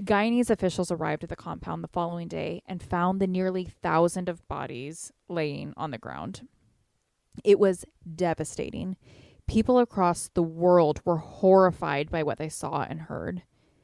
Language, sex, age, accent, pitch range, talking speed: English, female, 20-39, American, 170-200 Hz, 150 wpm